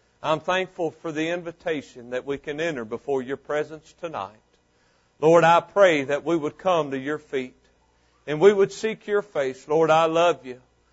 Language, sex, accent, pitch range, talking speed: English, male, American, 150-195 Hz, 180 wpm